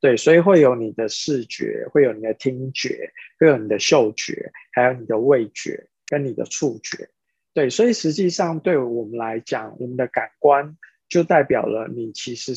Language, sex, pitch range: Chinese, male, 125-165 Hz